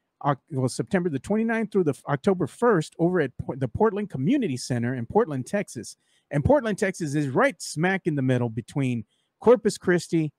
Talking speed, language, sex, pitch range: 160 wpm, English, male, 135-185 Hz